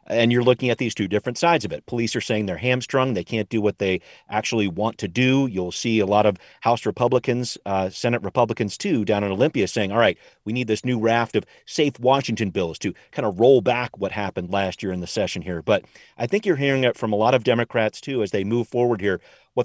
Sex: male